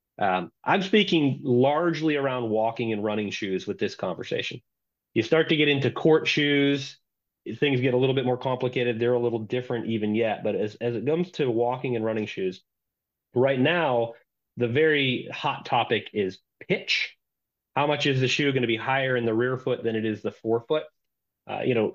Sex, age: male, 30-49